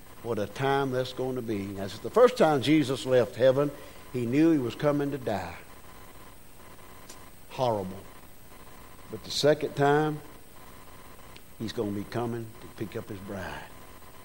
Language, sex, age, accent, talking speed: English, male, 50-69, American, 150 wpm